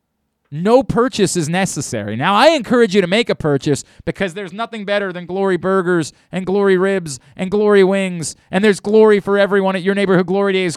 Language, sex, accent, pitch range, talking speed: English, male, American, 125-200 Hz, 195 wpm